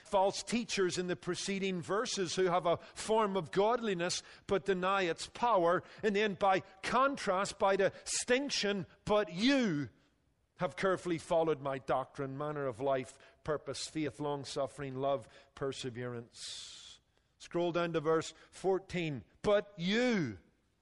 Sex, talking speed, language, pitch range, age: male, 125 wpm, English, 160-210 Hz, 50-69